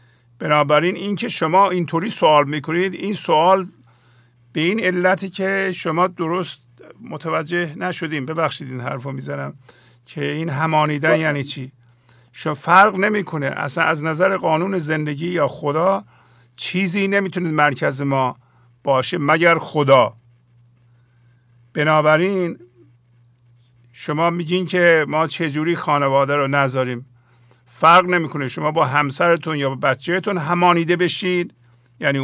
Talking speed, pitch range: 115 wpm, 130-180 Hz